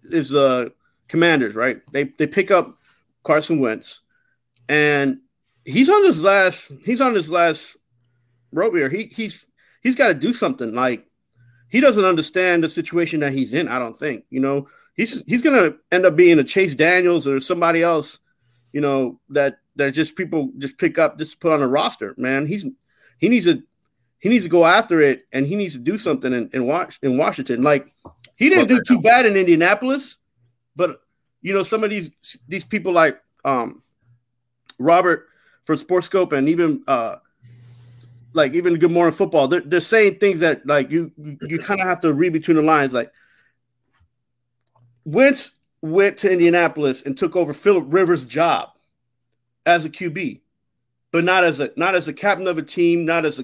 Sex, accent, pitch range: male, American, 135-185 Hz